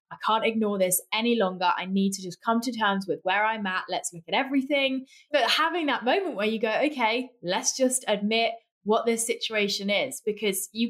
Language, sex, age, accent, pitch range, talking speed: English, female, 20-39, British, 195-235 Hz, 210 wpm